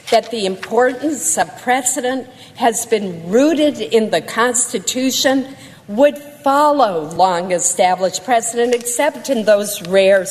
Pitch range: 190-265 Hz